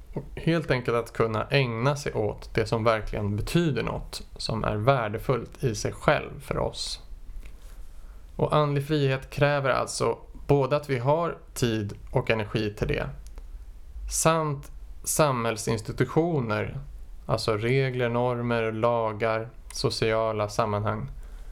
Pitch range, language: 110-140 Hz, Swedish